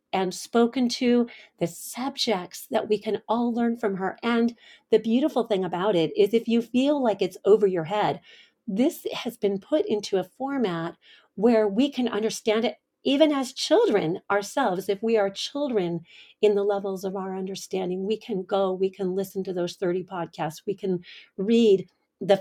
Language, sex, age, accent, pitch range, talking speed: English, female, 40-59, American, 190-225 Hz, 180 wpm